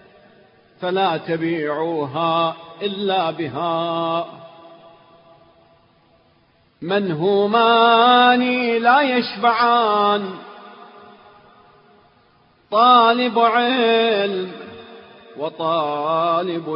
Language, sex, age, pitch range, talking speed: Arabic, male, 40-59, 165-205 Hz, 40 wpm